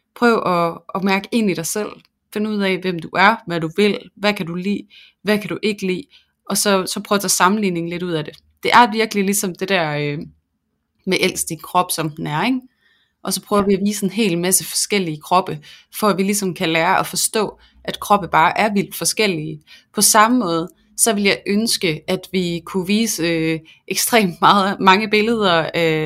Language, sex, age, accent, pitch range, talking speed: Danish, female, 30-49, native, 170-205 Hz, 210 wpm